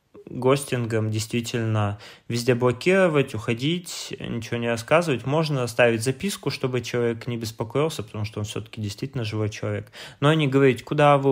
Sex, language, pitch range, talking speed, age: male, Russian, 110-130 Hz, 145 wpm, 20-39